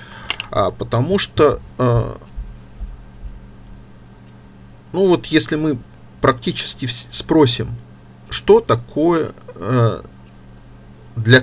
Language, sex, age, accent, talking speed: Russian, male, 50-69, native, 75 wpm